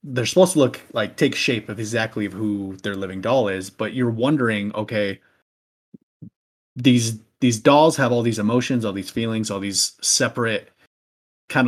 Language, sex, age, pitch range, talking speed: English, male, 30-49, 100-125 Hz, 165 wpm